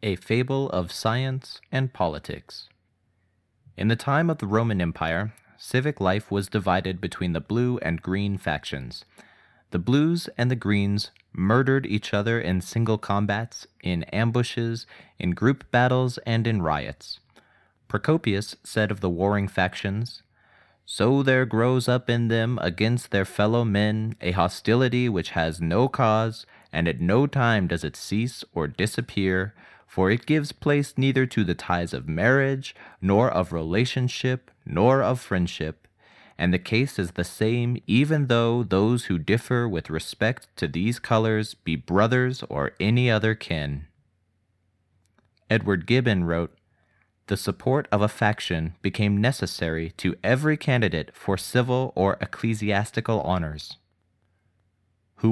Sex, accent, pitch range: male, American, 90-120 Hz